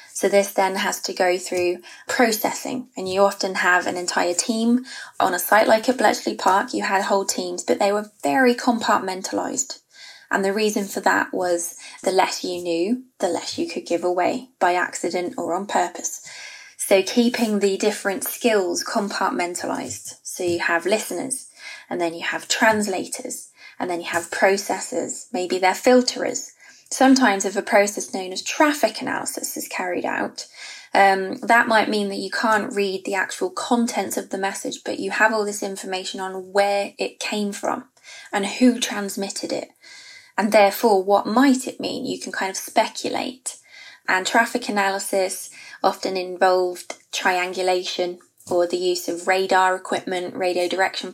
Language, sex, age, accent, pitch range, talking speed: English, female, 20-39, British, 185-240 Hz, 165 wpm